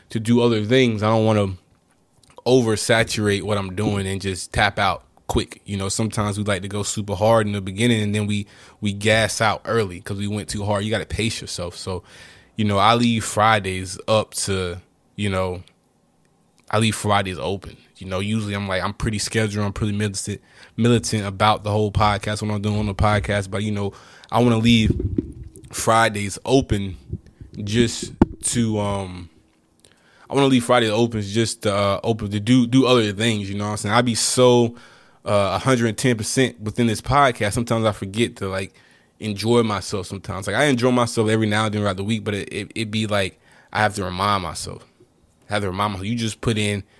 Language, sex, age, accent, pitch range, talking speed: English, male, 20-39, American, 100-115 Hz, 205 wpm